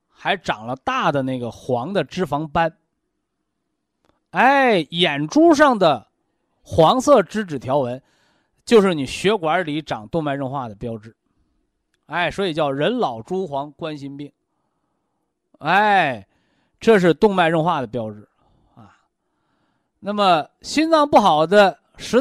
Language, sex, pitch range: Chinese, male, 145-220 Hz